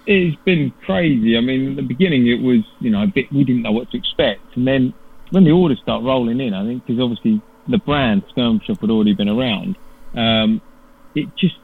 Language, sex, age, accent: English, male, 30-49, British